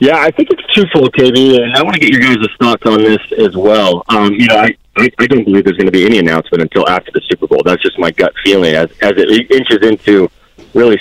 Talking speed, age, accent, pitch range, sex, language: 260 wpm, 40-59, American, 105-135 Hz, male, English